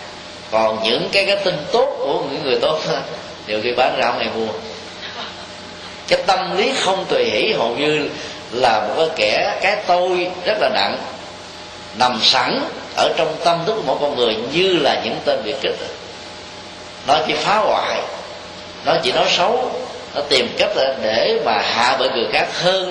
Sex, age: male, 20-39